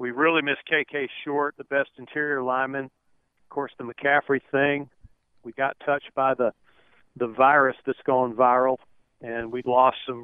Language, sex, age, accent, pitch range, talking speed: English, male, 50-69, American, 130-145 Hz, 165 wpm